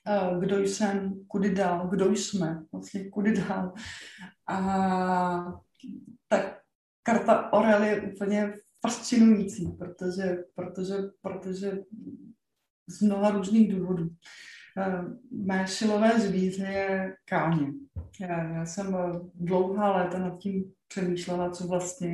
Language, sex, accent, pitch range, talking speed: Czech, female, native, 175-205 Hz, 95 wpm